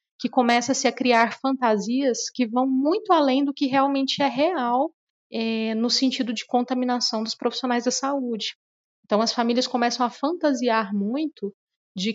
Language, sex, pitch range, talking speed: Portuguese, female, 210-250 Hz, 155 wpm